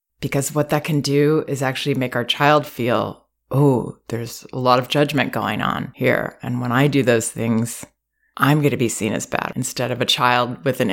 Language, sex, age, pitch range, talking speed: English, female, 30-49, 125-150 Hz, 215 wpm